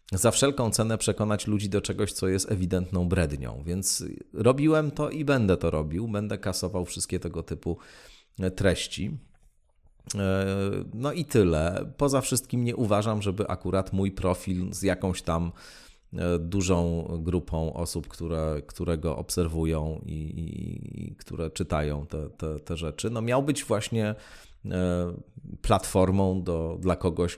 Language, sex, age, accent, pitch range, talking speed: Polish, male, 30-49, native, 80-105 Hz, 135 wpm